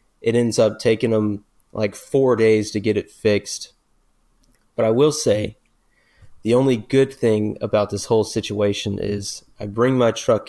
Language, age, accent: English, 30-49, American